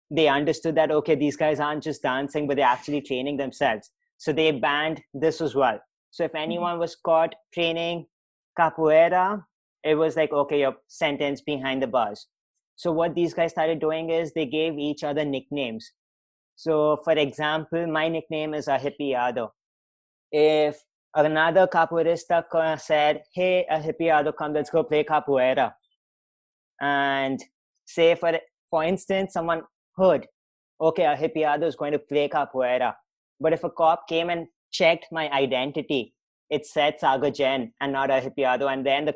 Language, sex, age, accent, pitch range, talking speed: English, male, 20-39, Indian, 140-165 Hz, 160 wpm